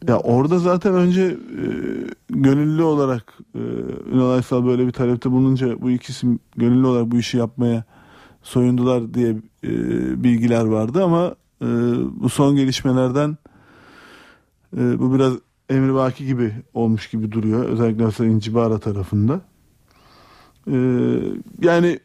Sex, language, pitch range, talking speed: male, Turkish, 115-135 Hz, 125 wpm